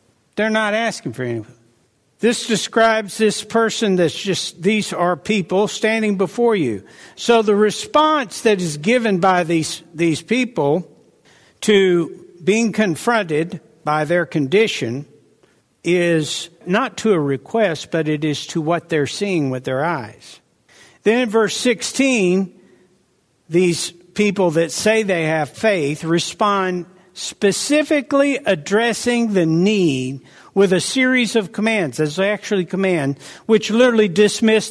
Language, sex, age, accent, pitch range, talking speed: English, male, 60-79, American, 165-220 Hz, 130 wpm